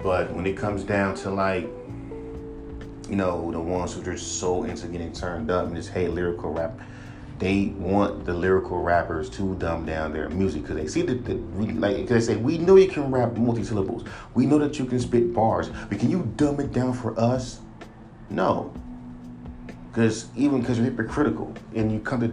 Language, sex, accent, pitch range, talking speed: English, male, American, 90-115 Hz, 195 wpm